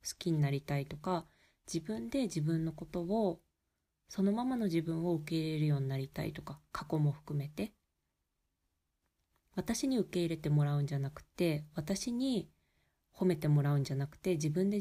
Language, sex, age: Japanese, female, 20-39